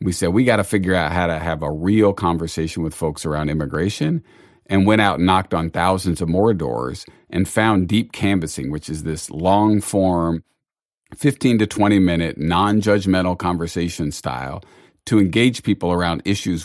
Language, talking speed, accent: English, 175 wpm, American